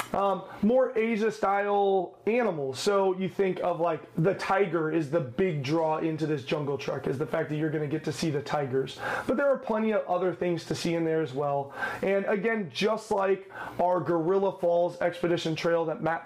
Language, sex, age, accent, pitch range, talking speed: English, male, 30-49, American, 155-195 Hz, 205 wpm